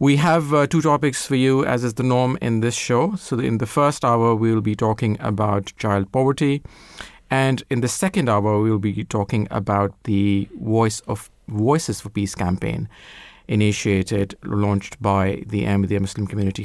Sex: male